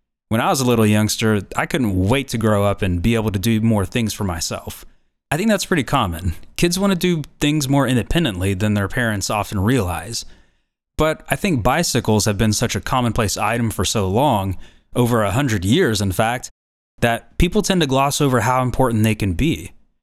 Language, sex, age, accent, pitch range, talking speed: English, male, 30-49, American, 105-140 Hz, 205 wpm